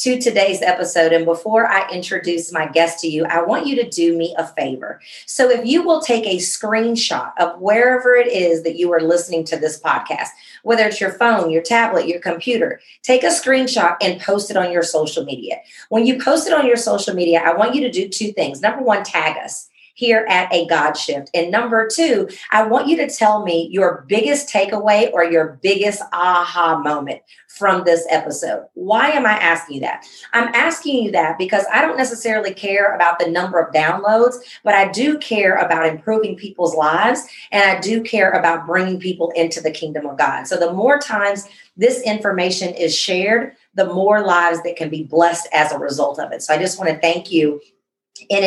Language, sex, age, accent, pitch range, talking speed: English, female, 40-59, American, 170-225 Hz, 205 wpm